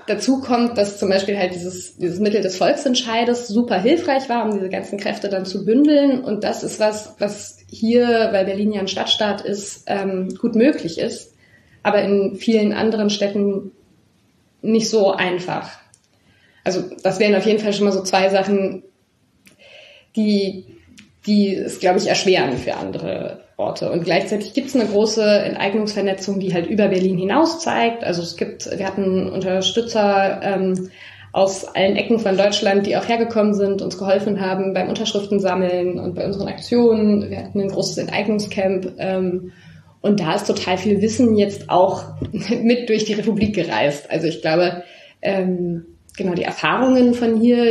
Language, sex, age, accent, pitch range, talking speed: German, female, 20-39, German, 185-215 Hz, 165 wpm